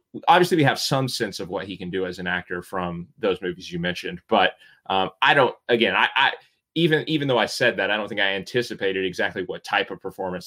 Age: 30-49